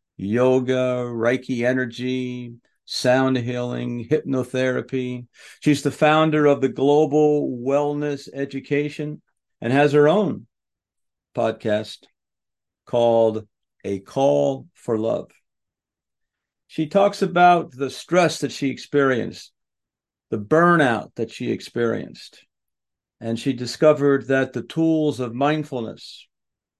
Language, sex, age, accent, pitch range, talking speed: English, male, 50-69, American, 115-145 Hz, 100 wpm